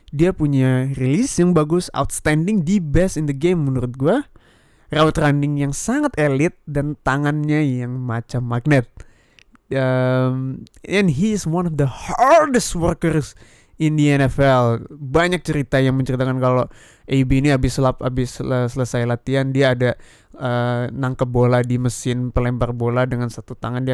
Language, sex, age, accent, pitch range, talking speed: Indonesian, male, 20-39, native, 125-150 Hz, 150 wpm